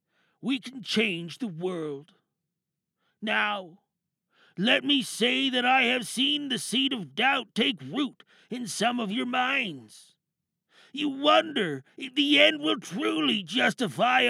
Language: English